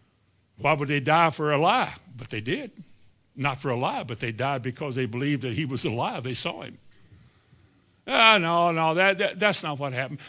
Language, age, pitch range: English, 60-79, 135-200 Hz